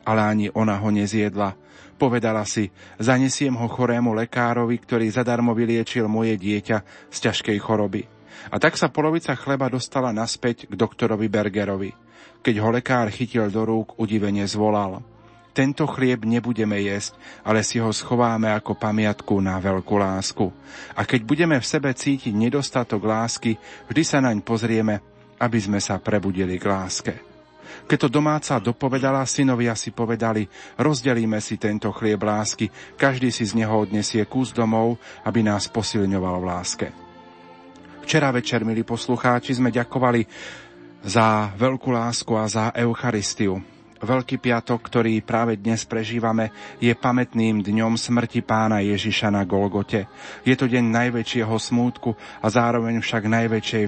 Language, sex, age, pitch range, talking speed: Slovak, male, 40-59, 105-120 Hz, 140 wpm